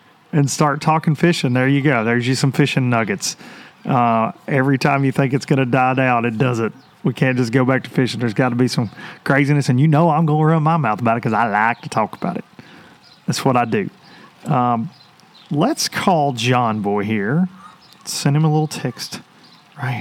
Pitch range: 125-160 Hz